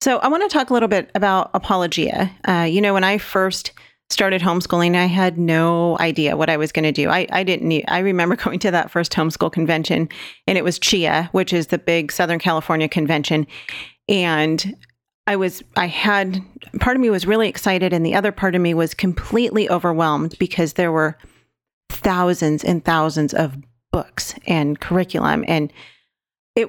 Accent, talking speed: American, 185 wpm